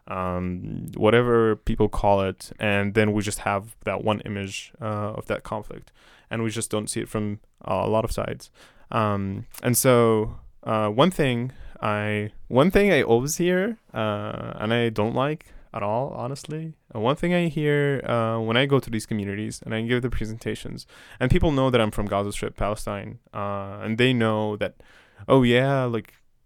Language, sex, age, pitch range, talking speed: English, male, 10-29, 105-130 Hz, 190 wpm